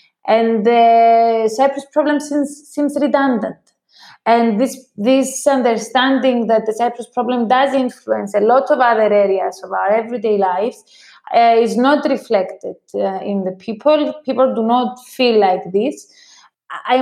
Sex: female